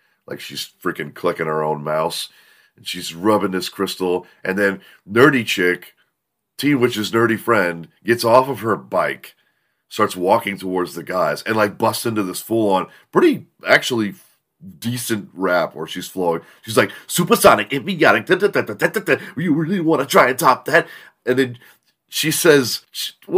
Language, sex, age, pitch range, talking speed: English, male, 30-49, 95-145 Hz, 170 wpm